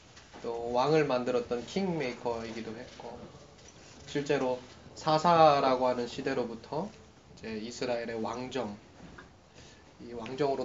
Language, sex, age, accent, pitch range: Korean, male, 20-39, native, 110-145 Hz